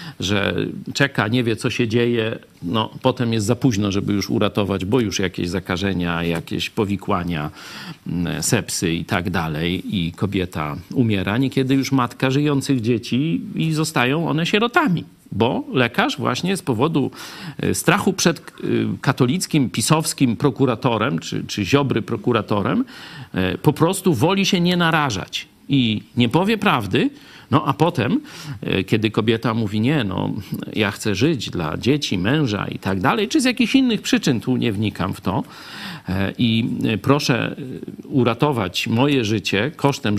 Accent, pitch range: native, 100-145 Hz